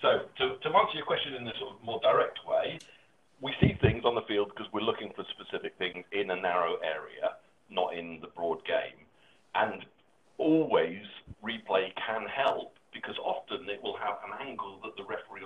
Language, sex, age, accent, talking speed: English, male, 50-69, British, 190 wpm